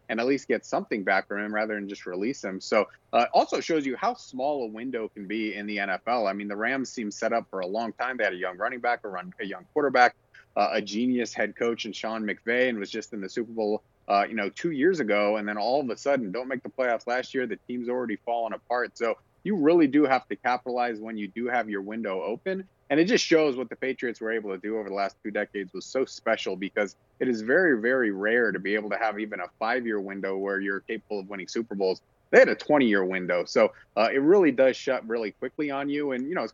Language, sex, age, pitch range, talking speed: English, male, 30-49, 100-125 Hz, 270 wpm